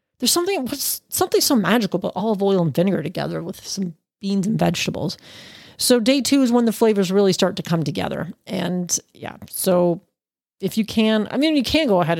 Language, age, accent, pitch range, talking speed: English, 30-49, American, 180-225 Hz, 195 wpm